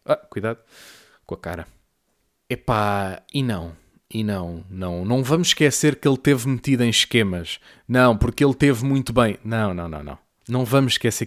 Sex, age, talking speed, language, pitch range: male, 20-39, 175 wpm, English, 110-150 Hz